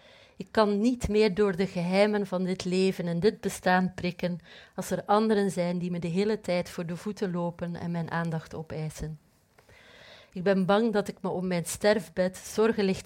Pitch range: 170-200 Hz